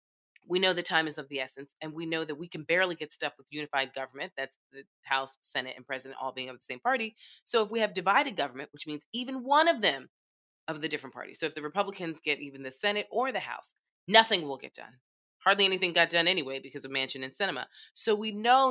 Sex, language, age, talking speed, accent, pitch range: female, English, 20-39, 245 wpm, American, 140-205 Hz